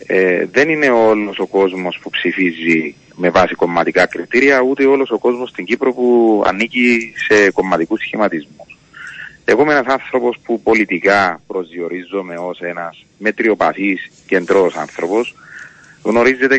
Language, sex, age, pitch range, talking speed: Greek, male, 30-49, 95-130 Hz, 130 wpm